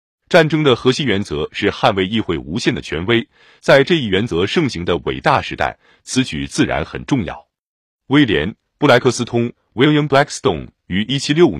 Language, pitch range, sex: Chinese, 95-140 Hz, male